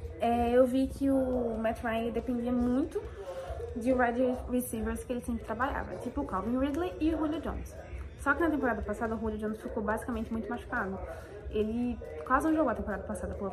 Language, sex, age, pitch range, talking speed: Portuguese, female, 20-39, 215-255 Hz, 190 wpm